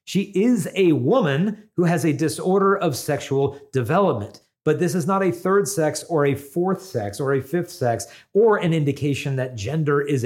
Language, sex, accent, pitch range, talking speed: English, male, American, 125-170 Hz, 185 wpm